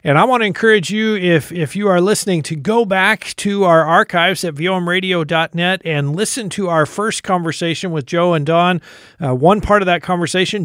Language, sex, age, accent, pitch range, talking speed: English, male, 50-69, American, 160-190 Hz, 195 wpm